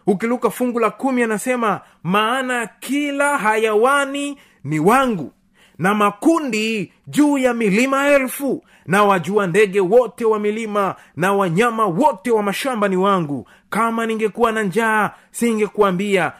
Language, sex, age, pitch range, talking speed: Swahili, male, 30-49, 180-235 Hz, 125 wpm